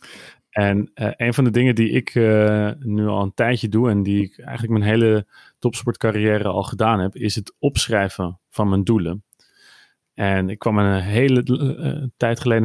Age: 30-49